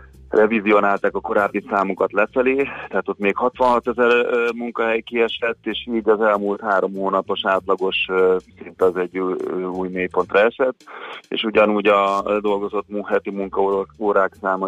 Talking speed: 130 wpm